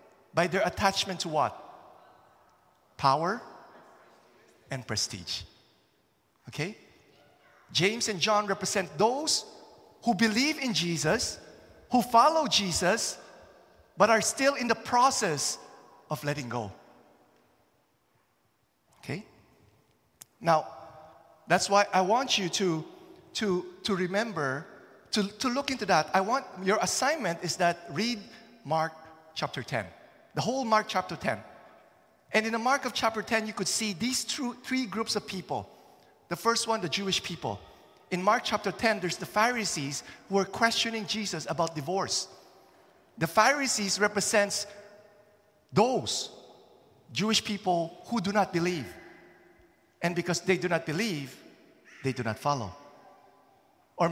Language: English